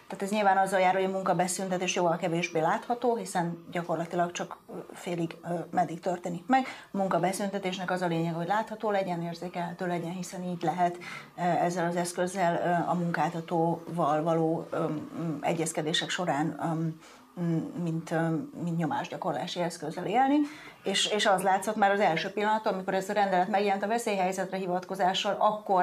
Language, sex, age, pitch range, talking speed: Hungarian, female, 30-49, 170-190 Hz, 140 wpm